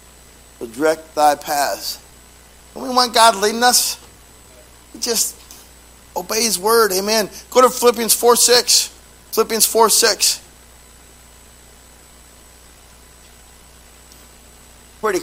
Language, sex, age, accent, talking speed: English, male, 40-59, American, 95 wpm